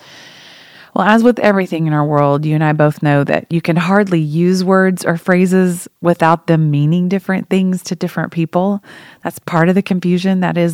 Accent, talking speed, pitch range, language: American, 195 wpm, 155-185 Hz, English